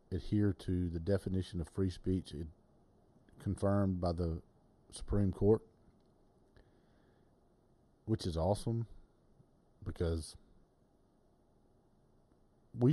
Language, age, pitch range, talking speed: English, 50-69, 85-105 Hz, 80 wpm